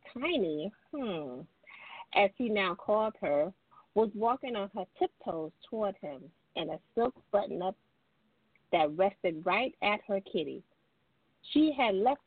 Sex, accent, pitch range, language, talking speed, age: female, American, 170-230 Hz, English, 130 wpm, 40-59